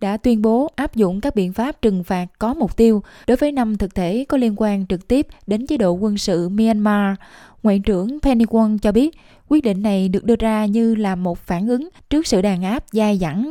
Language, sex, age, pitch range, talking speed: Vietnamese, female, 20-39, 195-230 Hz, 230 wpm